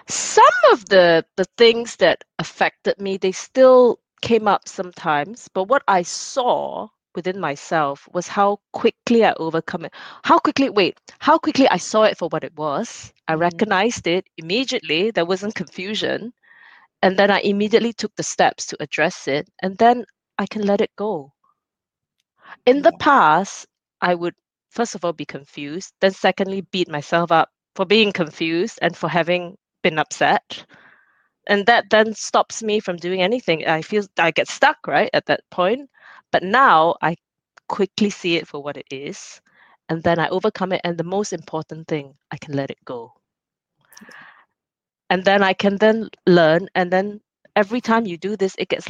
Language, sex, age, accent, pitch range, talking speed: English, female, 20-39, Malaysian, 170-215 Hz, 175 wpm